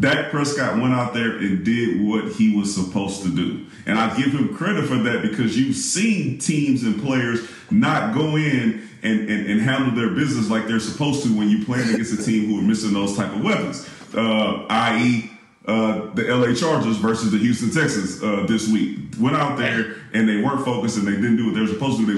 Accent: American